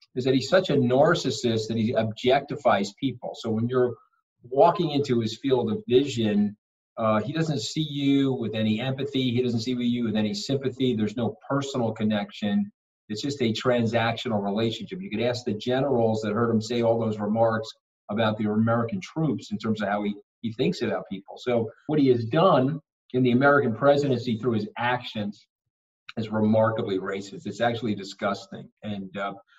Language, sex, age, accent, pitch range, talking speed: Hebrew, male, 50-69, American, 110-135 Hz, 180 wpm